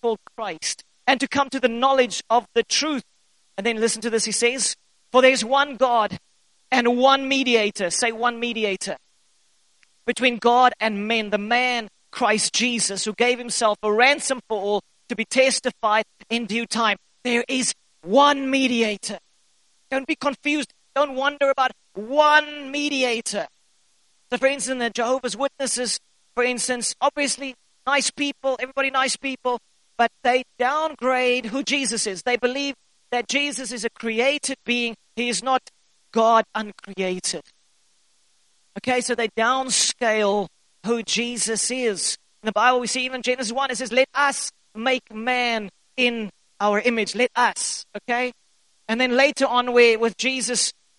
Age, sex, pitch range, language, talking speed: 40-59, male, 225-265 Hz, English, 150 wpm